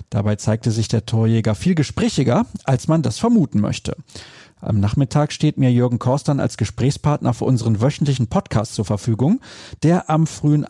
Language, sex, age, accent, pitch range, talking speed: German, male, 40-59, German, 115-160 Hz, 165 wpm